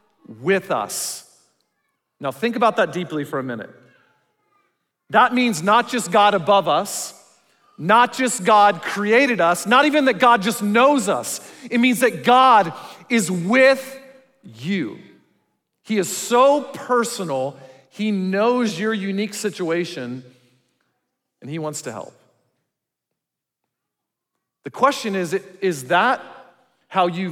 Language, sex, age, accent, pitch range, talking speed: English, male, 40-59, American, 160-210 Hz, 125 wpm